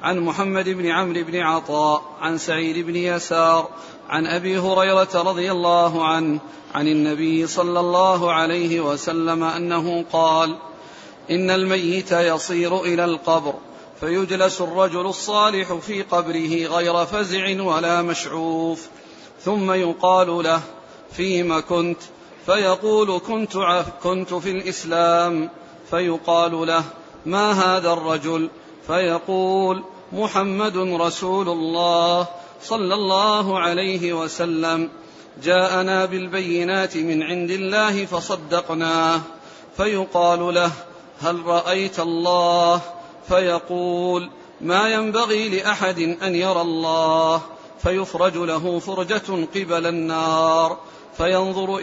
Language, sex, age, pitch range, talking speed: Arabic, male, 40-59, 165-185 Hz, 100 wpm